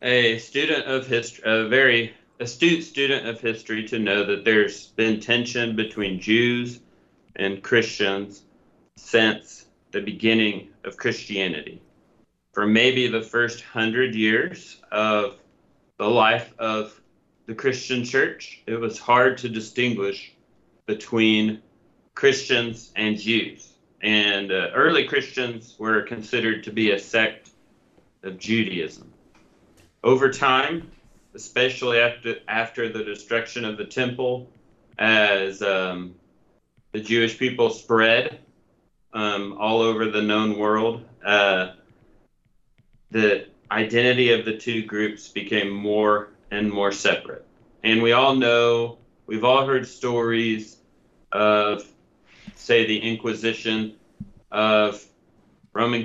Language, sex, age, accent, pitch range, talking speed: English, male, 40-59, American, 105-120 Hz, 115 wpm